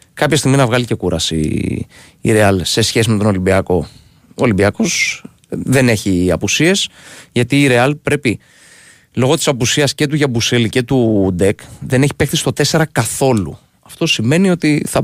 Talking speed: 165 wpm